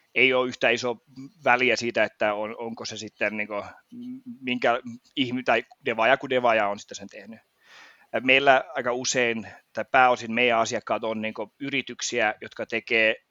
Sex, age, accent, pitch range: male, 30-49, native, 110-125 Hz